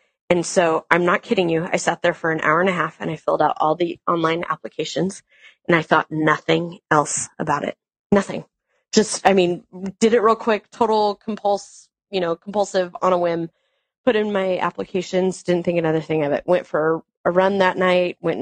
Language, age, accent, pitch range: English, 20-39, American, 165-205 Hz